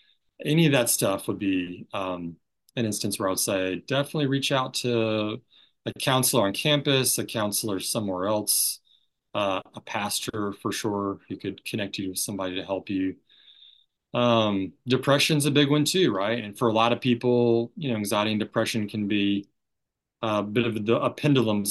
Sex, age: male, 30-49